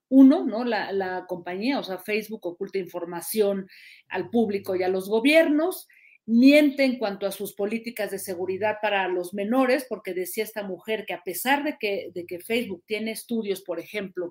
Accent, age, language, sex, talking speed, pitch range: Mexican, 40-59, Spanish, female, 180 wpm, 185-230 Hz